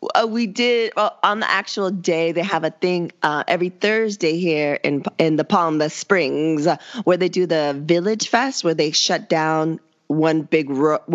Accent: American